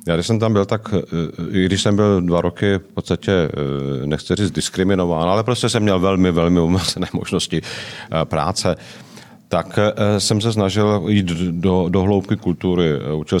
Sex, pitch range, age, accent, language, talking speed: male, 85-100 Hz, 40-59, native, Czech, 160 wpm